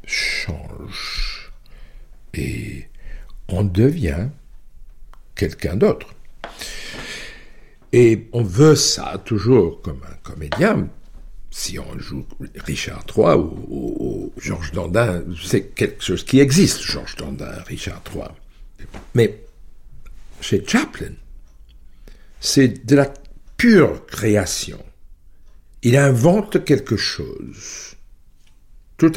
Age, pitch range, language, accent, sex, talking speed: 60-79, 80-125 Hz, French, French, male, 95 wpm